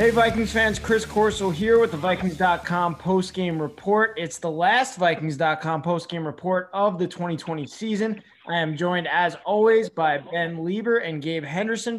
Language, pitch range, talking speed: English, 165-200 Hz, 170 wpm